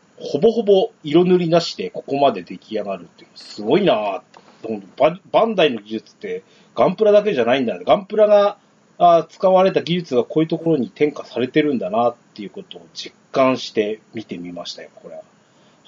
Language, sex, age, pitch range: Japanese, male, 30-49, 125-210 Hz